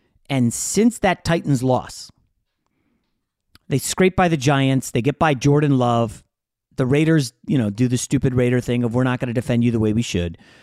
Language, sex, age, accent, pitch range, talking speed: English, male, 30-49, American, 120-150 Hz, 200 wpm